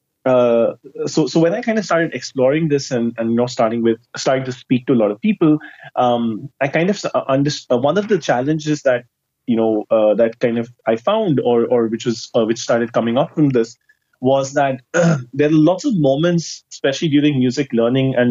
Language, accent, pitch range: English, Indian, 120-150 Hz